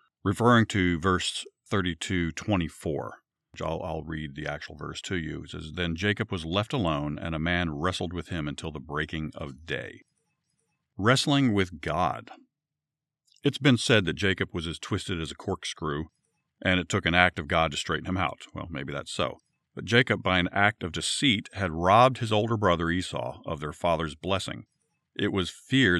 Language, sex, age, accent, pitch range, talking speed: English, male, 50-69, American, 85-110 Hz, 190 wpm